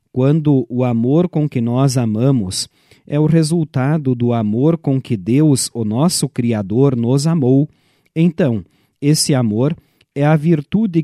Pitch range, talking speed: 125-160 Hz, 140 wpm